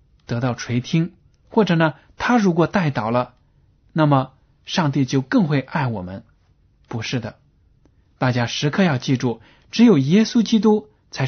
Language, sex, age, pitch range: Chinese, male, 20-39, 120-155 Hz